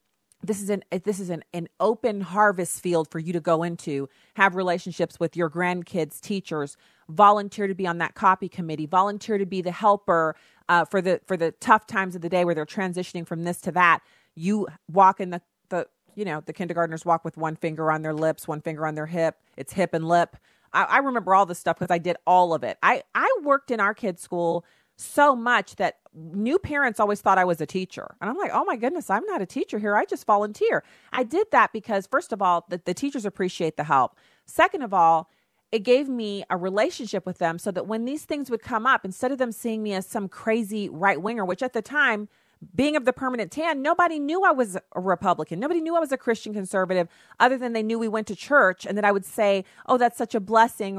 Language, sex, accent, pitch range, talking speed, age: English, female, American, 180-240 Hz, 235 wpm, 40-59